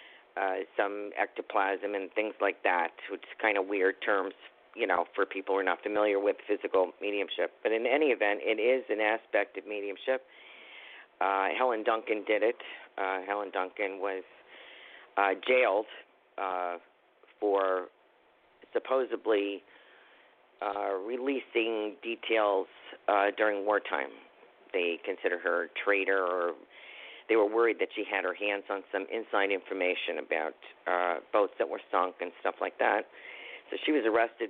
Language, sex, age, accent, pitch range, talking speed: English, male, 50-69, American, 100-130 Hz, 150 wpm